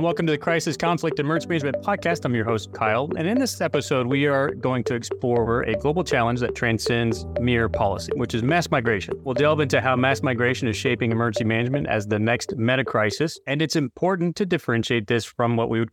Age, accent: 30-49, American